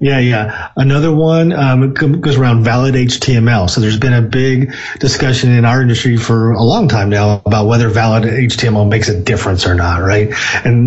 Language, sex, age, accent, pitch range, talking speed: English, male, 40-59, American, 115-140 Hz, 190 wpm